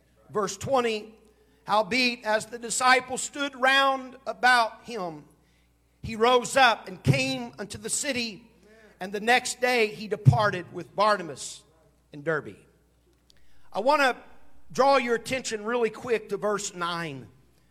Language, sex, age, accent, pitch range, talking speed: English, male, 50-69, American, 145-240 Hz, 130 wpm